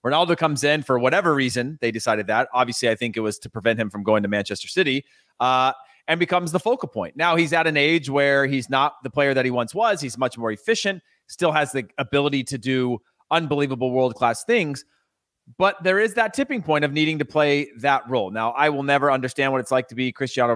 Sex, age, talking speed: male, 30-49, 230 wpm